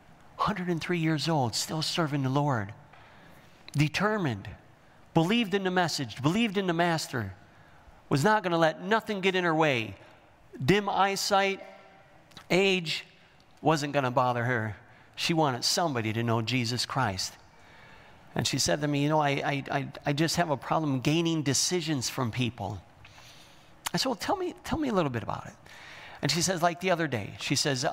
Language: English